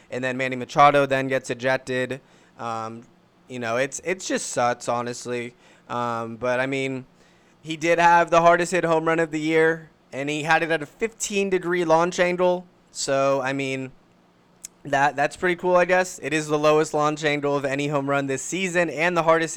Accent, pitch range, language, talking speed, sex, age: American, 130-165 Hz, English, 195 wpm, male, 20-39